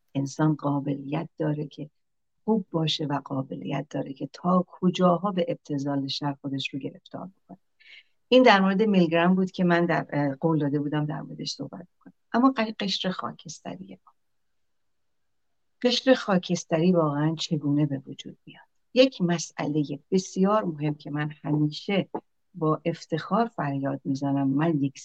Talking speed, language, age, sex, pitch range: 135 wpm, Persian, 60-79, female, 145-180 Hz